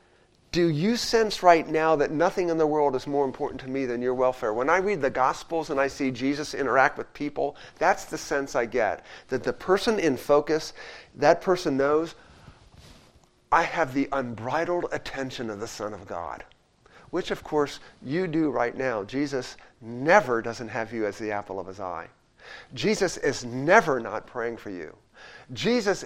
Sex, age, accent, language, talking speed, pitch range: male, 40-59, American, English, 180 wpm, 120-175 Hz